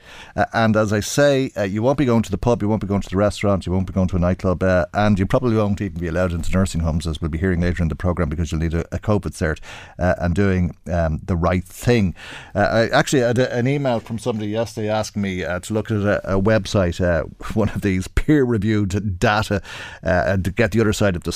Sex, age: male, 50-69